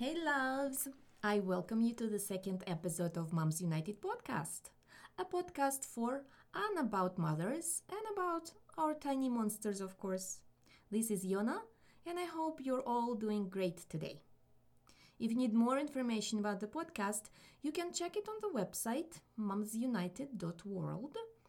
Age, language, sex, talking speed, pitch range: 20-39, English, female, 150 wpm, 190-275 Hz